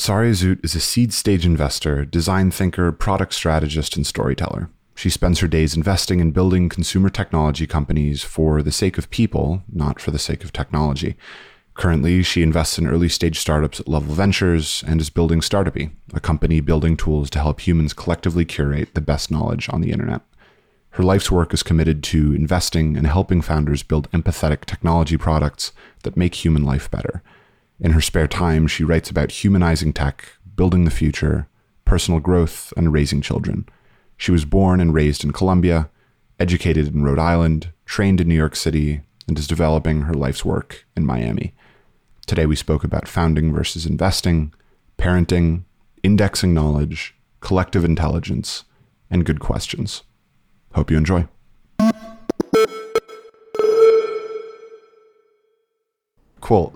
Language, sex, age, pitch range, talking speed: English, male, 30-49, 75-95 Hz, 150 wpm